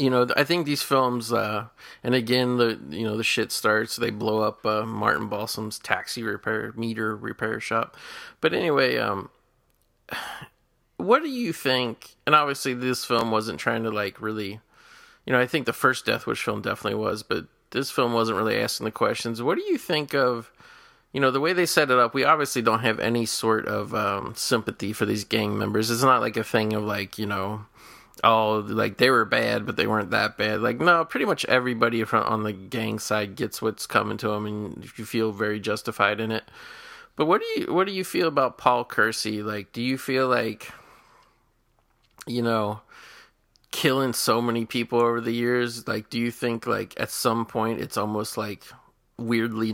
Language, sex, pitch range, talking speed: English, male, 110-125 Hz, 195 wpm